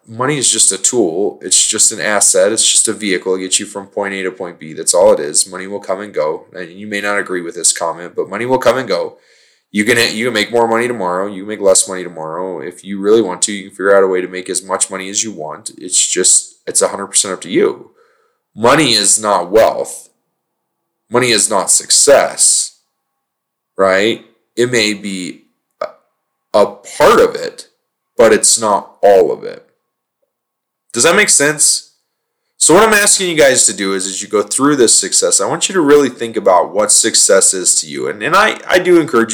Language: English